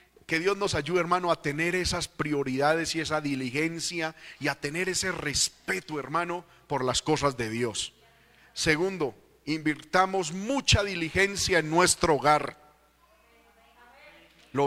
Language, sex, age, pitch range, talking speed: Spanish, male, 40-59, 145-185 Hz, 125 wpm